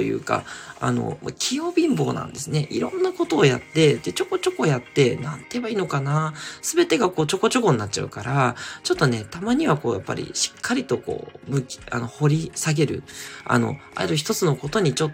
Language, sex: Japanese, male